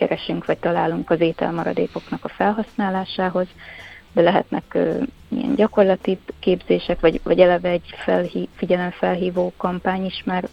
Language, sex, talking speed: Hungarian, female, 125 wpm